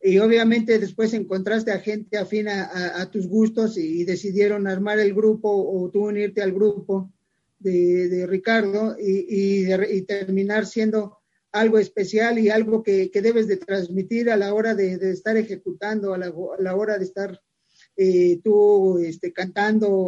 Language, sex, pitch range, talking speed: English, male, 190-220 Hz, 165 wpm